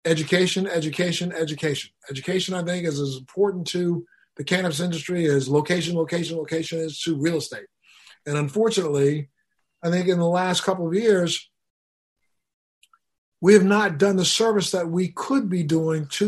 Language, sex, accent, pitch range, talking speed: English, male, American, 150-185 Hz, 160 wpm